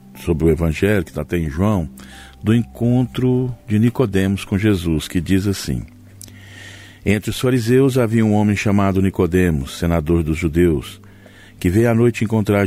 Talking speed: 155 wpm